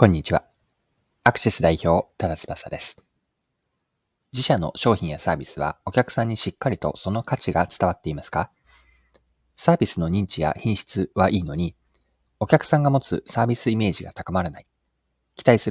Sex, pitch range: male, 85-135 Hz